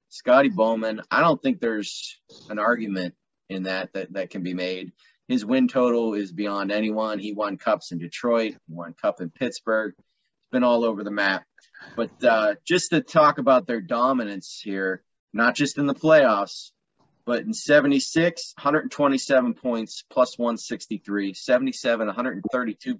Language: English